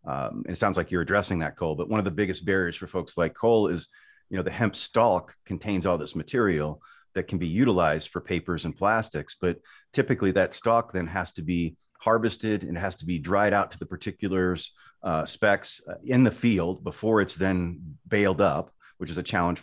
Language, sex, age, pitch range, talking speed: English, male, 40-59, 85-105 Hz, 215 wpm